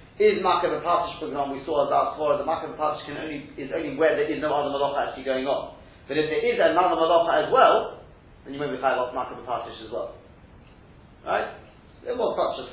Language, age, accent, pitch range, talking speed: English, 40-59, British, 135-195 Hz, 210 wpm